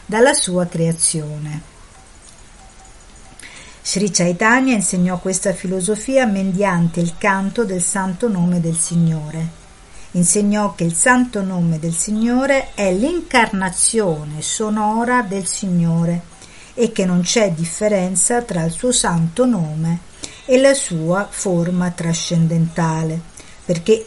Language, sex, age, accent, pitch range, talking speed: Italian, female, 50-69, native, 170-220 Hz, 110 wpm